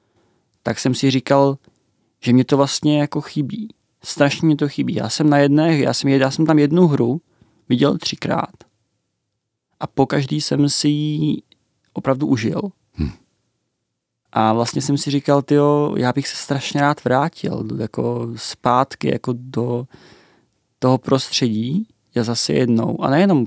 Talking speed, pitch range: 150 wpm, 115-140 Hz